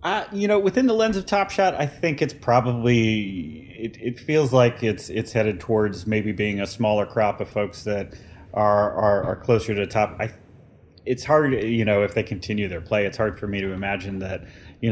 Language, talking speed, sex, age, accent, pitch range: English, 215 wpm, male, 30-49, American, 95-110 Hz